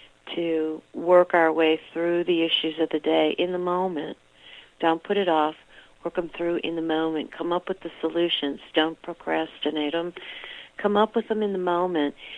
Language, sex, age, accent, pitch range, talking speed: English, female, 50-69, American, 155-175 Hz, 185 wpm